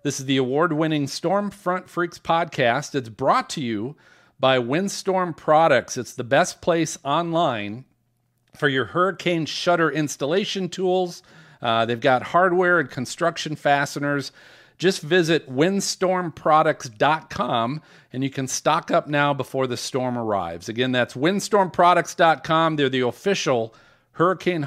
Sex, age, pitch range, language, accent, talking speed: male, 40-59, 135-175 Hz, English, American, 125 wpm